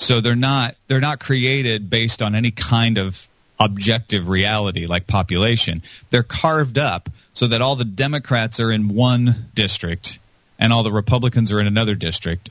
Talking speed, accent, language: 170 wpm, American, English